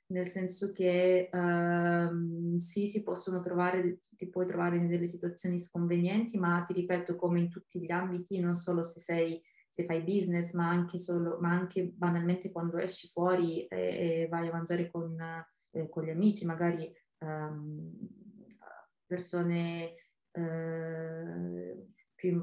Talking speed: 140 wpm